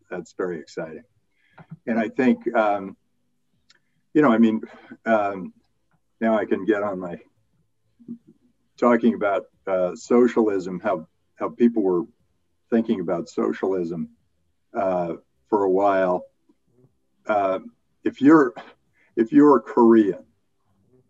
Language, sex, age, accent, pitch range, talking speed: English, male, 50-69, American, 95-120 Hz, 115 wpm